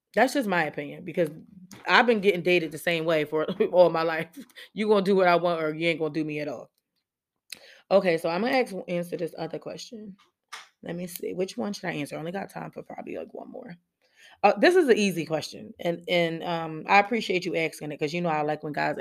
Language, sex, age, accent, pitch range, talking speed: English, female, 20-39, American, 155-180 Hz, 250 wpm